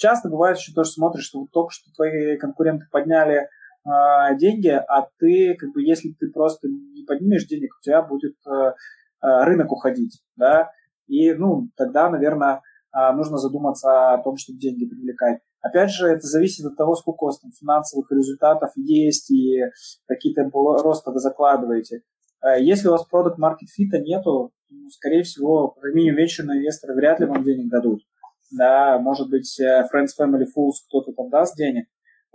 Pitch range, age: 135-175 Hz, 20-39